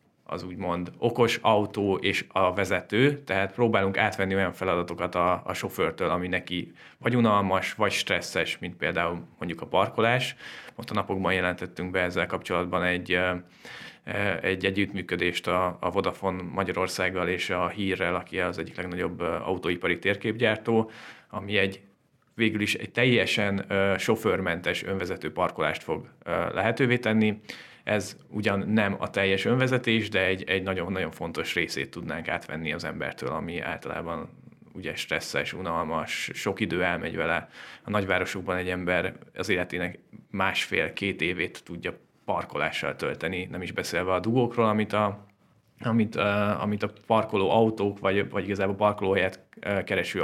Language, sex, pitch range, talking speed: Hungarian, male, 90-105 Hz, 135 wpm